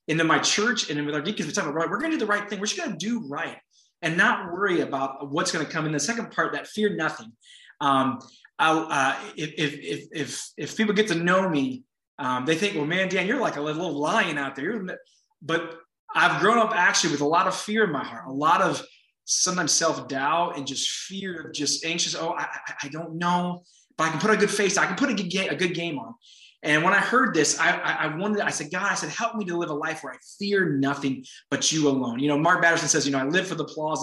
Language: English